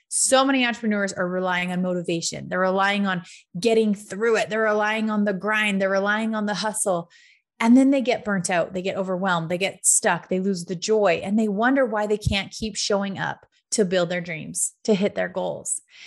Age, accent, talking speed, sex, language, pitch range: 30-49, American, 210 wpm, female, English, 185-225 Hz